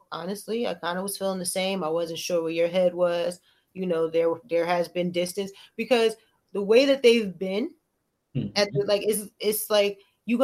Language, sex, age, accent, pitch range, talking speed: English, female, 20-39, American, 180-210 Hz, 200 wpm